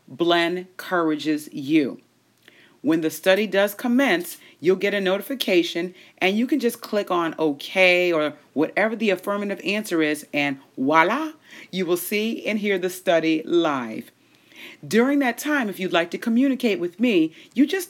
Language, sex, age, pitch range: English, female, 40-59, 155-240 Hz